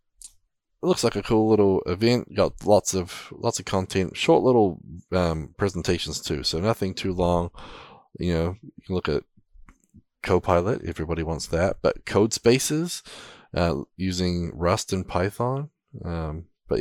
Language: English